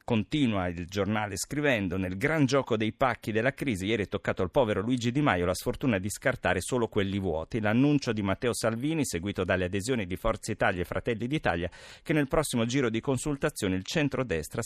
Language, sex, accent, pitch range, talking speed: Italian, male, native, 100-130 Hz, 190 wpm